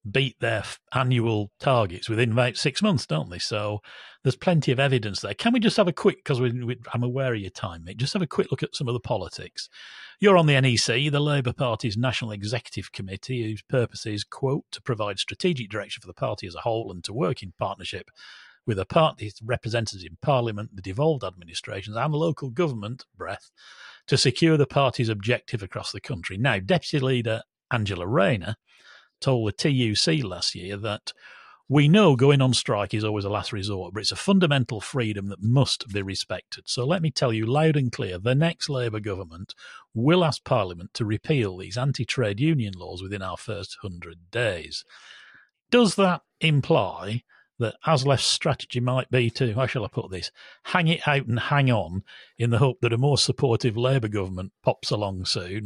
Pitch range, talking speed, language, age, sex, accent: 105-140 Hz, 195 wpm, English, 40-59, male, British